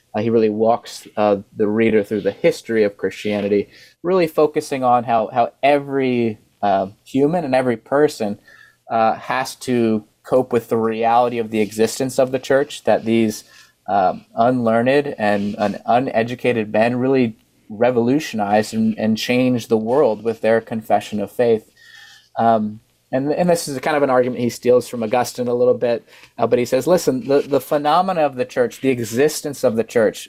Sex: male